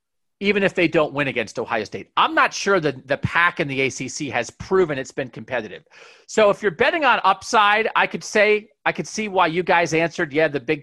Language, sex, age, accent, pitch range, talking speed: English, male, 40-59, American, 140-175 Hz, 235 wpm